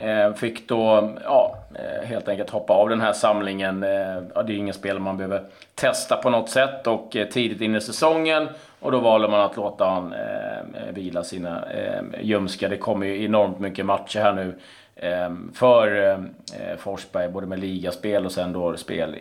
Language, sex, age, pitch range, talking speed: Swedish, male, 30-49, 105-145 Hz, 180 wpm